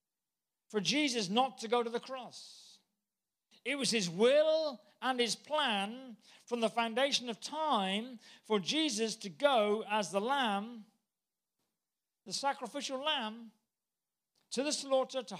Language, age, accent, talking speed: English, 50-69, British, 135 wpm